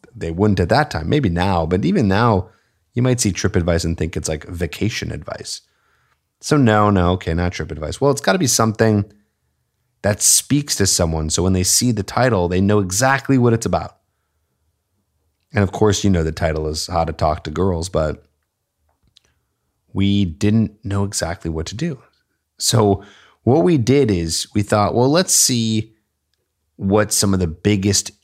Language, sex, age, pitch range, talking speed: English, male, 30-49, 85-110 Hz, 185 wpm